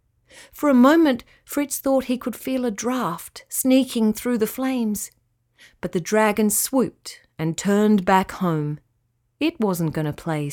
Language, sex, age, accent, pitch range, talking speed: English, female, 40-59, Australian, 160-245 Hz, 155 wpm